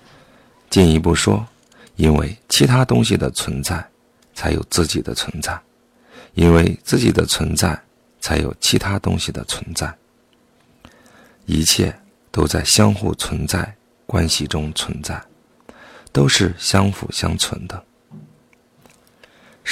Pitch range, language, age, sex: 80-100 Hz, Chinese, 50-69, male